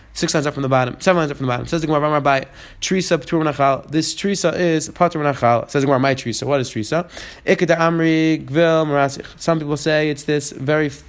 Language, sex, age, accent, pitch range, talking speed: English, male, 20-39, American, 135-170 Hz, 180 wpm